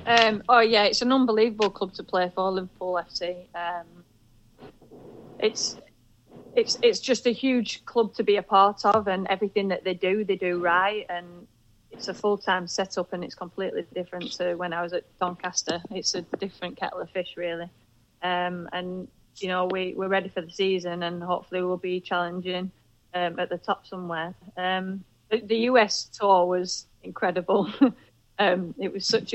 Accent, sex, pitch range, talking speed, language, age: British, female, 175-195 Hz, 180 wpm, English, 30-49